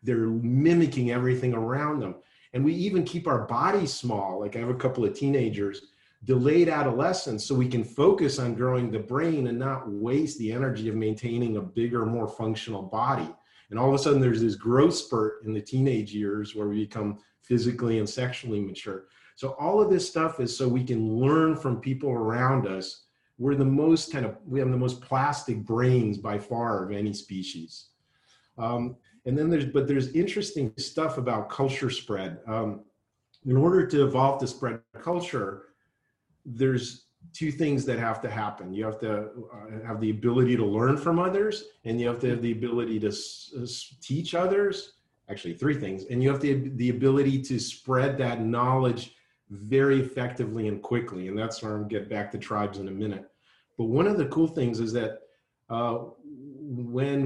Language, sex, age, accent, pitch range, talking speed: English, male, 40-59, American, 110-135 Hz, 185 wpm